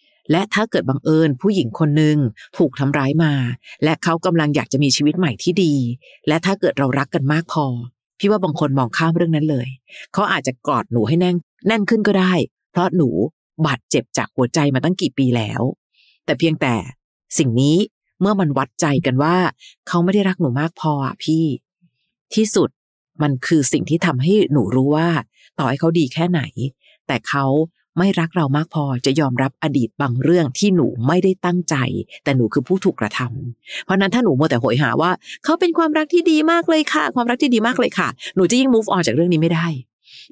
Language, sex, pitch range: Thai, female, 135-185 Hz